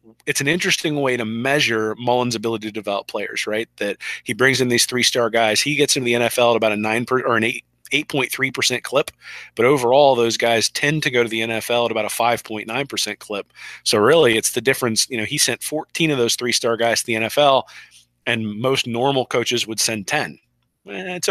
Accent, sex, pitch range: American, male, 110-130 Hz